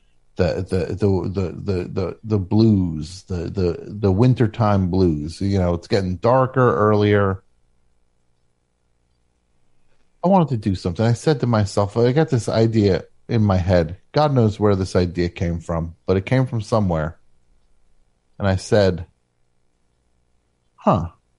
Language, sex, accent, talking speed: English, male, American, 140 wpm